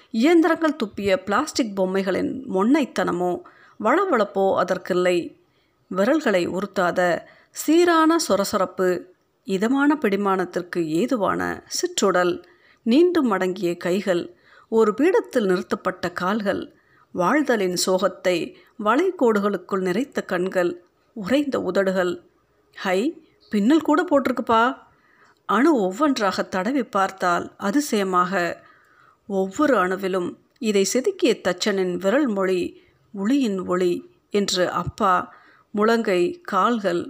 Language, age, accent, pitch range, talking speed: Tamil, 50-69, native, 185-260 Hz, 80 wpm